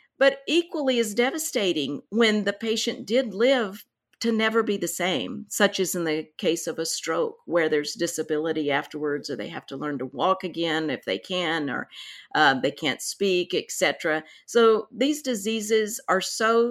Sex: female